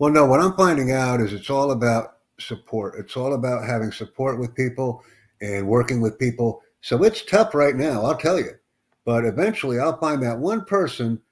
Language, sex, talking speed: English, male, 195 wpm